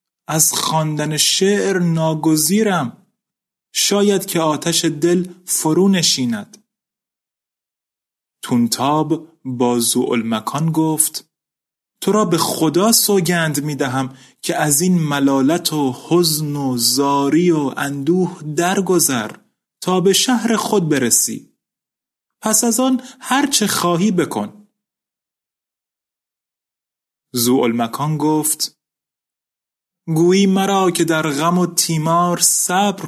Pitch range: 140-185 Hz